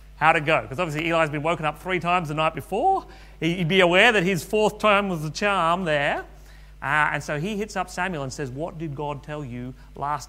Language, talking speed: English, 235 wpm